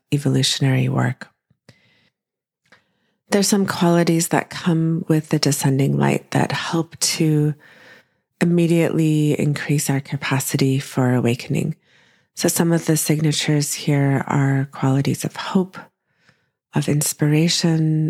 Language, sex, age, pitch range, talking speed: English, female, 30-49, 140-170 Hz, 105 wpm